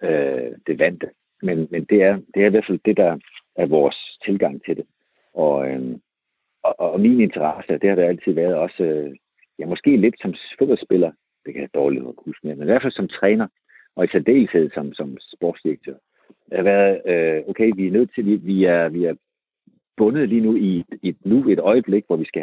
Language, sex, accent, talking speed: Danish, male, native, 210 wpm